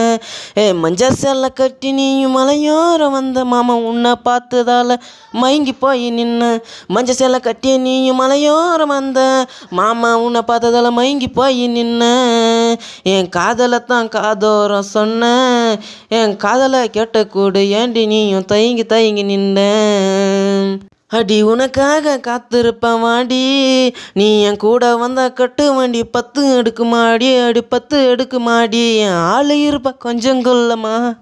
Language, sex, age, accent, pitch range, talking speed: Tamil, female, 20-39, native, 215-255 Hz, 110 wpm